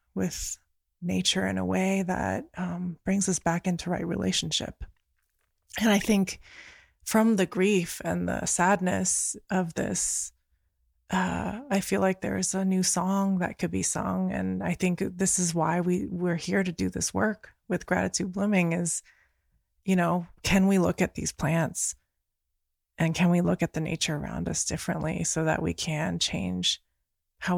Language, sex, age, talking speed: English, female, 20-39, 170 wpm